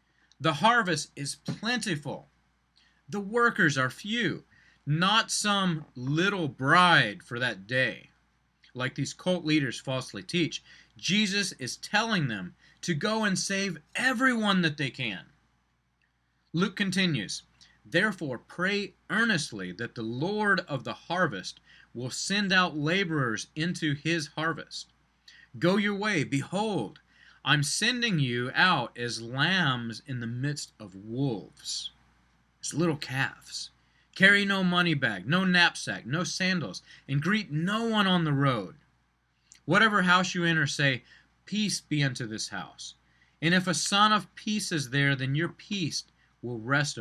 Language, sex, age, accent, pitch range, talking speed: English, male, 30-49, American, 130-185 Hz, 135 wpm